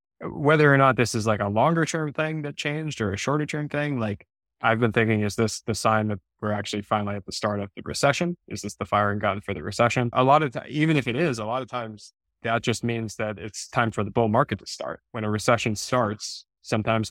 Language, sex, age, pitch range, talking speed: English, male, 20-39, 105-120 Hz, 255 wpm